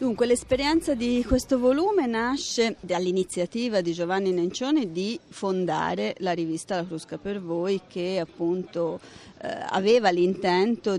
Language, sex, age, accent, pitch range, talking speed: Italian, female, 30-49, native, 170-205 Hz, 125 wpm